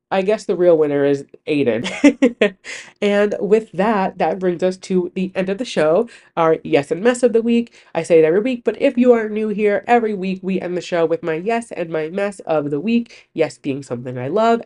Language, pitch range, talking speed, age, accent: English, 155-215 Hz, 235 wpm, 20-39, American